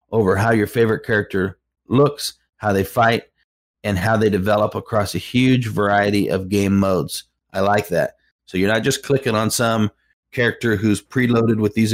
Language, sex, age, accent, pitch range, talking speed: English, male, 30-49, American, 95-110 Hz, 175 wpm